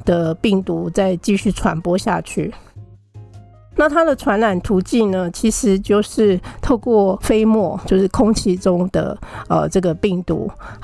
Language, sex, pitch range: Chinese, female, 180-220 Hz